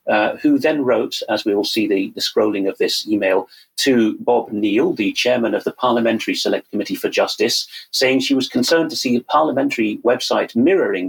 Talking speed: 195 wpm